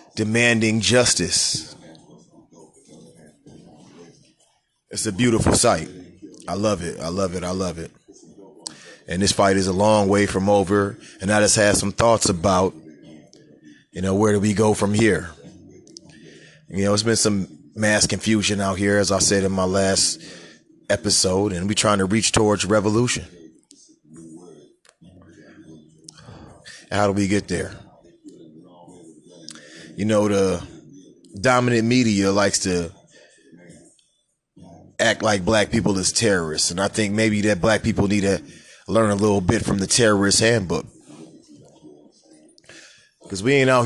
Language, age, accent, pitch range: English, 30-49, American, 95-115 Hz